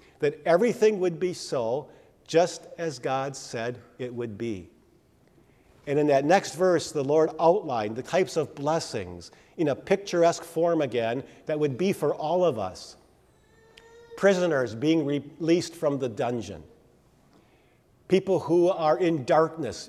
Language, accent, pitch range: English, American, 130-170 Hz